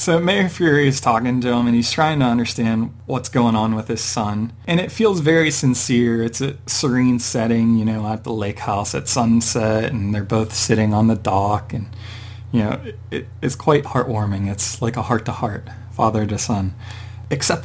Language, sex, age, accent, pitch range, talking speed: English, male, 30-49, American, 110-125 Hz, 185 wpm